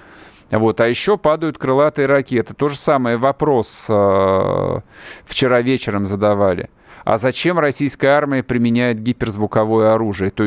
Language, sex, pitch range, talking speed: Russian, male, 105-130 Hz, 125 wpm